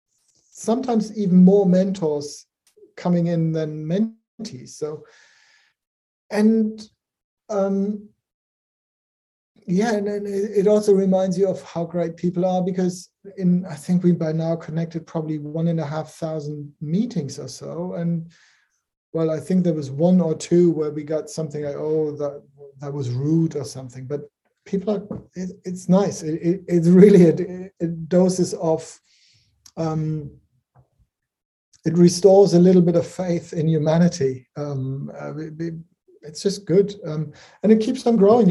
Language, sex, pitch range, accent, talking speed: English, male, 155-185 Hz, German, 150 wpm